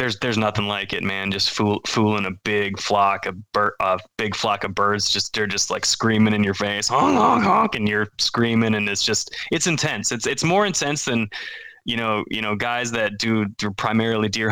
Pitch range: 100-110 Hz